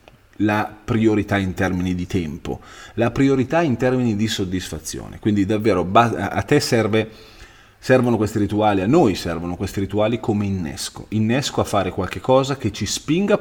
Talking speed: 150 wpm